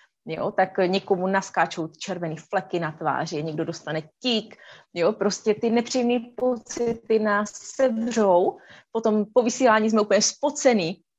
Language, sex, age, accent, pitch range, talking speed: Czech, female, 30-49, native, 170-225 Hz, 125 wpm